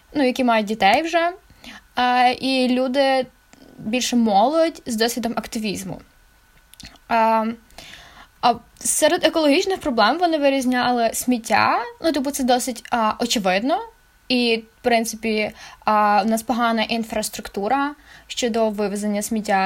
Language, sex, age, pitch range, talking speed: Ukrainian, female, 10-29, 215-260 Hz, 115 wpm